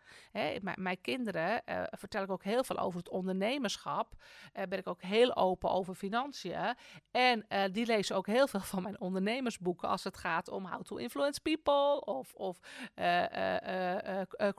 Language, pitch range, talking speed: Dutch, 190-260 Hz, 175 wpm